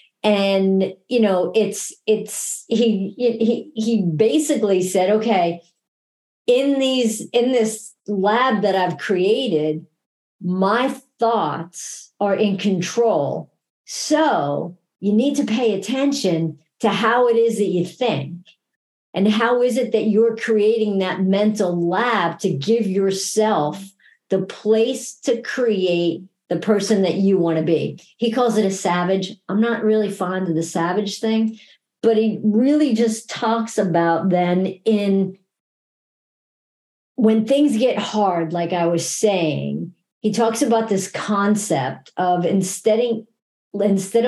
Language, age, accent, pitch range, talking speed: English, 50-69, American, 180-225 Hz, 130 wpm